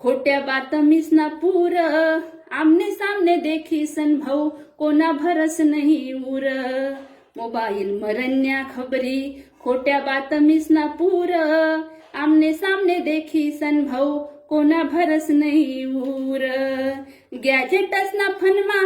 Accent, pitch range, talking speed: native, 265-315 Hz, 65 wpm